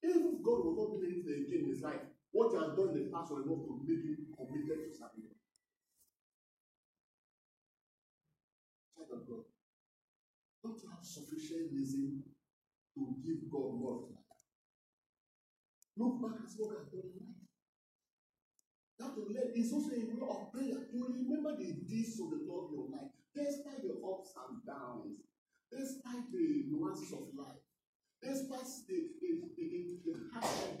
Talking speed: 150 wpm